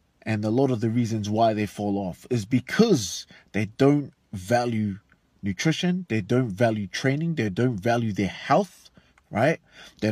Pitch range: 105-145 Hz